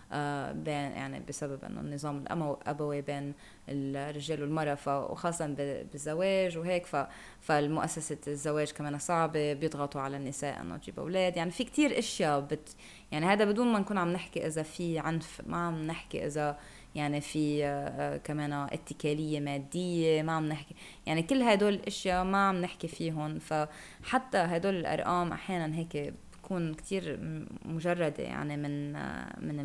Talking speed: 145 wpm